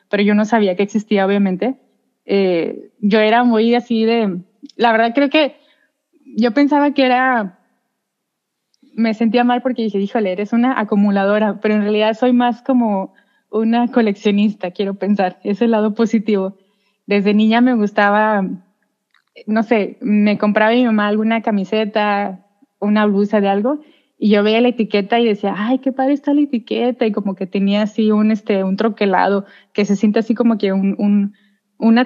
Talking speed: 170 wpm